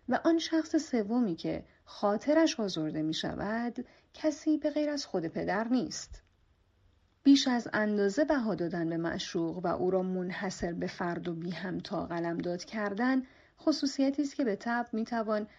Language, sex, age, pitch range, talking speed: Persian, female, 40-59, 175-255 Hz, 165 wpm